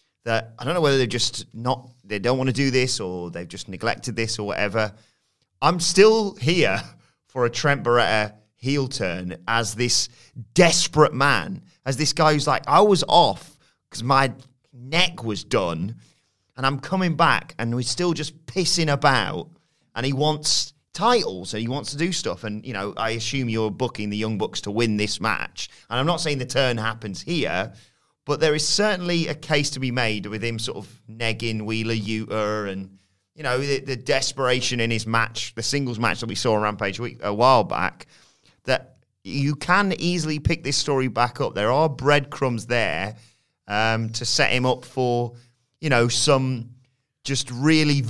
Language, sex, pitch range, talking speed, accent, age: English, male, 115-145 Hz, 185 wpm, British, 30-49